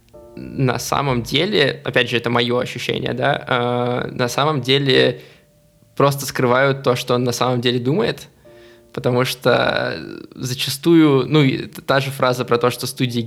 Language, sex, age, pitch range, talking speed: Russian, male, 20-39, 120-135 Hz, 150 wpm